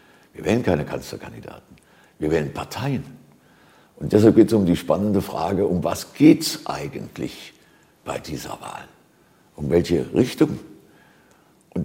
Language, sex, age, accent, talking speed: German, male, 60-79, German, 135 wpm